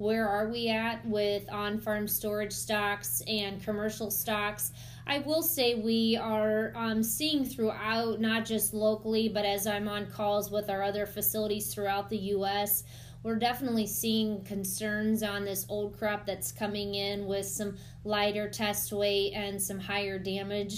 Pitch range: 200-220 Hz